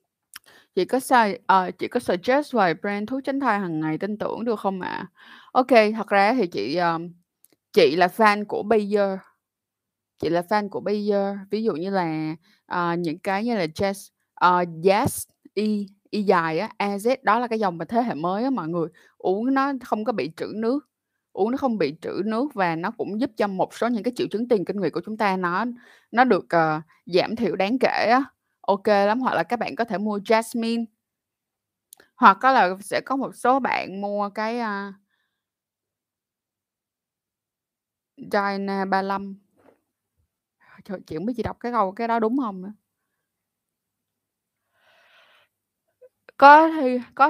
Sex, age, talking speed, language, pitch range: female, 20-39, 175 wpm, Vietnamese, 190-245 Hz